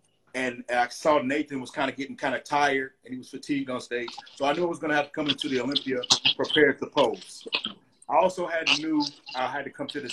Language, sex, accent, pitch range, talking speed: Portuguese, male, American, 135-160 Hz, 260 wpm